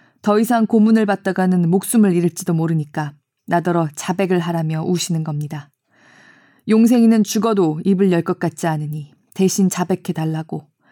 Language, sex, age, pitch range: Korean, female, 20-39, 160-210 Hz